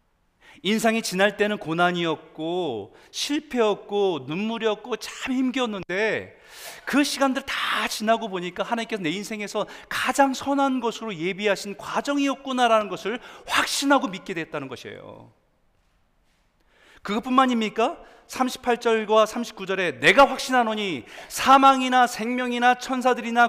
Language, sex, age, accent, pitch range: Korean, male, 40-59, native, 200-265 Hz